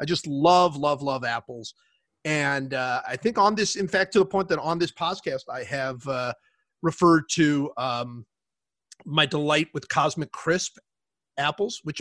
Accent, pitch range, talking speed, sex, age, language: American, 150-205 Hz, 170 wpm, male, 30-49, English